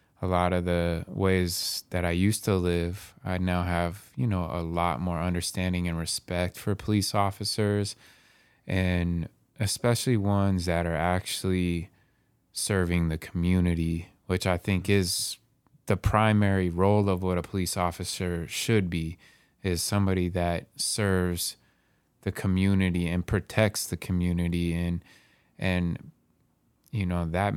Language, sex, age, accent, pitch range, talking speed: English, male, 20-39, American, 85-100 Hz, 135 wpm